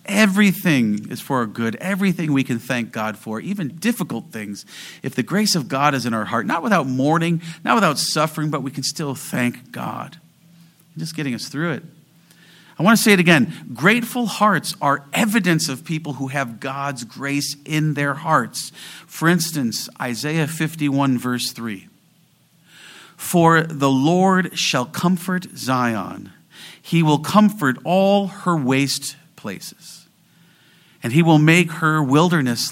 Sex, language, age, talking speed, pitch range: male, English, 40-59, 155 wpm, 125-175 Hz